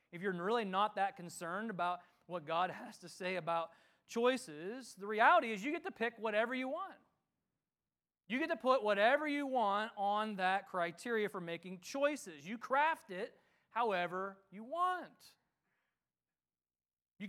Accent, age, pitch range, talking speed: American, 30-49, 185-255 Hz, 155 wpm